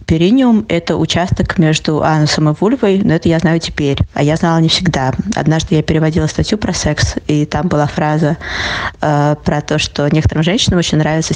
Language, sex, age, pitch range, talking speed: Russian, female, 20-39, 150-170 Hz, 185 wpm